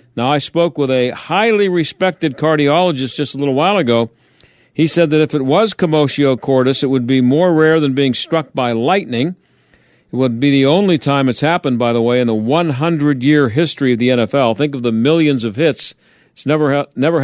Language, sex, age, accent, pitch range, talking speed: English, male, 50-69, American, 130-165 Hz, 200 wpm